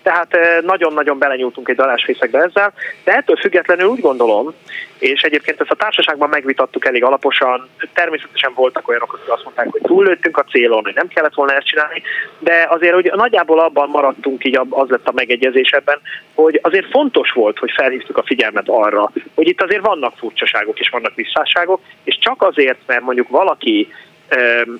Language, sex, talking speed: Hungarian, male, 170 wpm